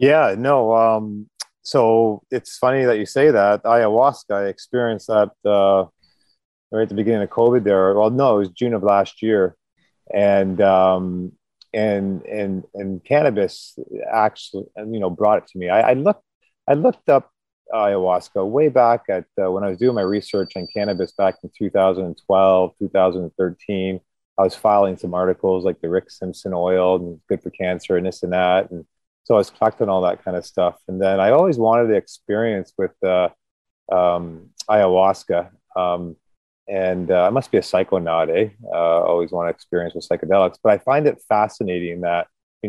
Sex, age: male, 30-49